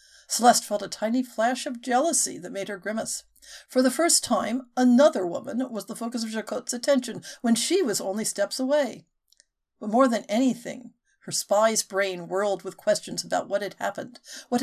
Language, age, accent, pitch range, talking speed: English, 50-69, American, 190-255 Hz, 180 wpm